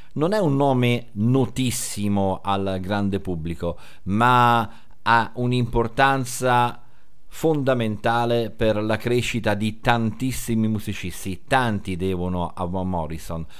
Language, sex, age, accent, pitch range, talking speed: Italian, male, 50-69, native, 95-135 Hz, 95 wpm